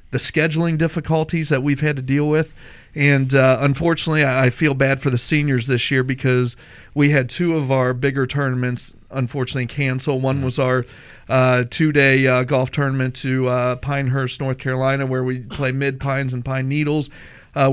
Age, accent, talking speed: 40-59, American, 175 wpm